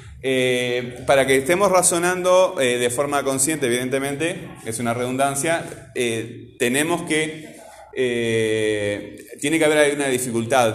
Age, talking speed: 20-39, 125 wpm